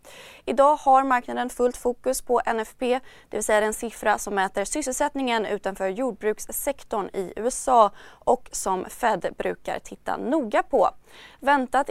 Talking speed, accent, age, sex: 135 wpm, native, 20-39, female